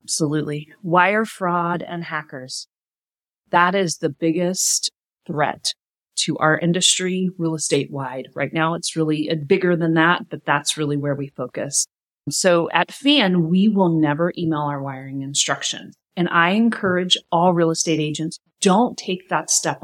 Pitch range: 155-220 Hz